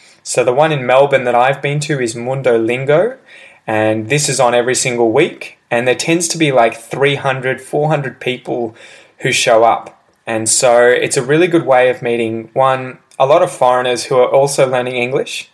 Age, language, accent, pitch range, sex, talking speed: 20-39, English, Australian, 115-140 Hz, male, 195 wpm